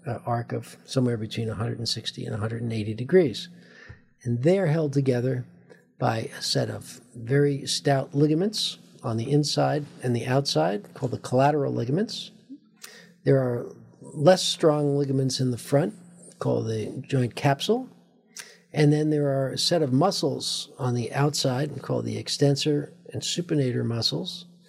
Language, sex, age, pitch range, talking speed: English, male, 50-69, 125-170 Hz, 145 wpm